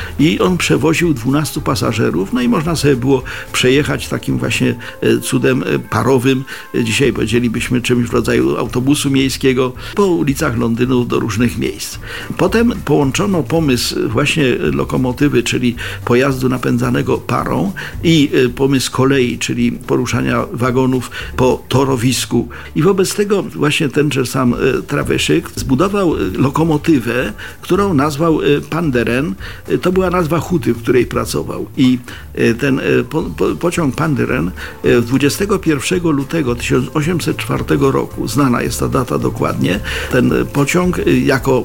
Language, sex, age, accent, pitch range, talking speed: Polish, male, 50-69, native, 120-155 Hz, 115 wpm